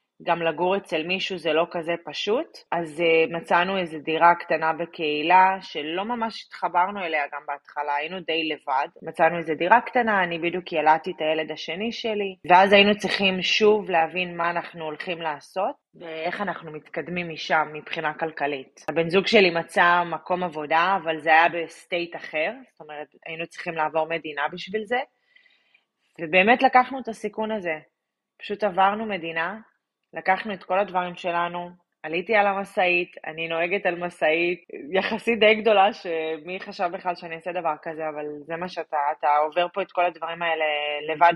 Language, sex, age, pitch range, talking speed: Hebrew, female, 20-39, 160-190 Hz, 160 wpm